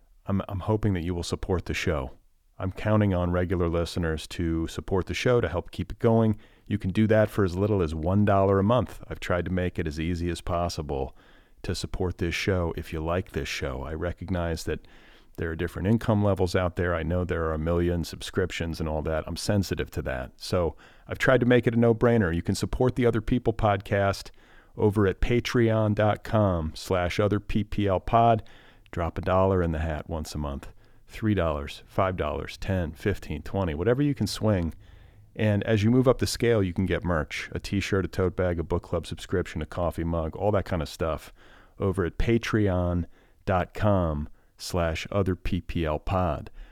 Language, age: English, 40-59